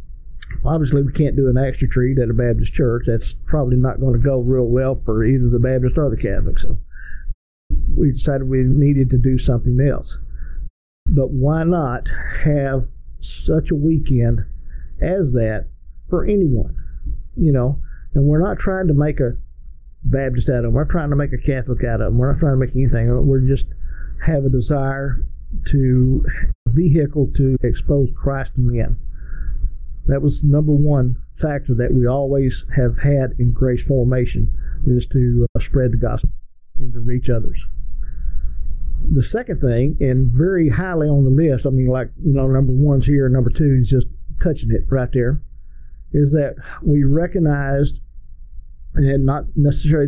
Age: 50-69